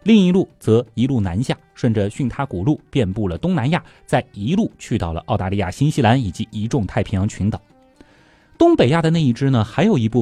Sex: male